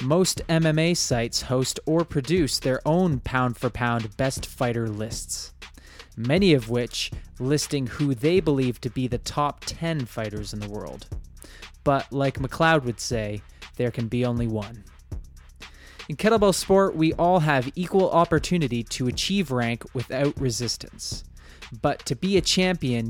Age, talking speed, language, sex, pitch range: 20-39, 150 wpm, English, male, 120-165 Hz